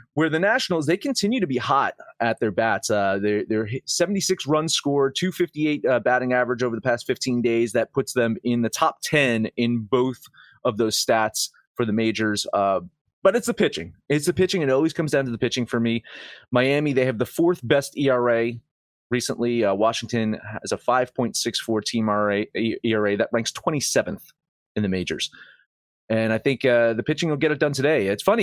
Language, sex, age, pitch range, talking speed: English, male, 30-49, 110-155 Hz, 190 wpm